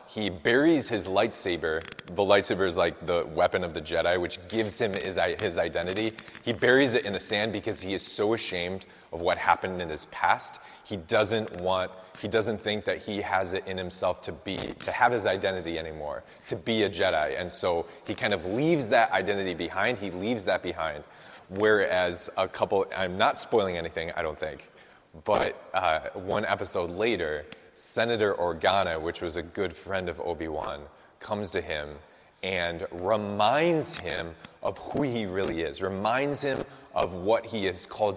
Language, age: English, 20-39